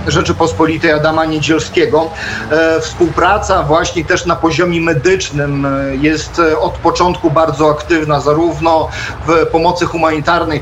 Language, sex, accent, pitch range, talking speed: Polish, male, native, 150-165 Hz, 100 wpm